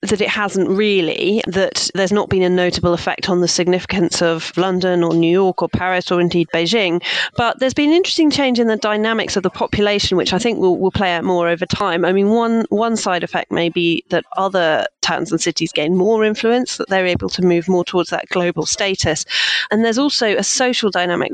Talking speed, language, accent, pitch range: 220 wpm, English, British, 170-200 Hz